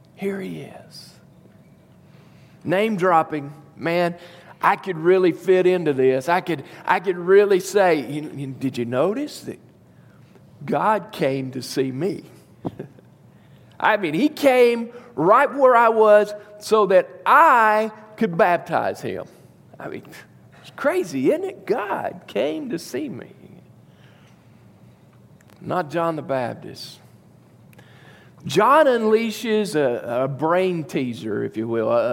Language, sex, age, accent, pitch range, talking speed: English, male, 50-69, American, 160-215 Hz, 120 wpm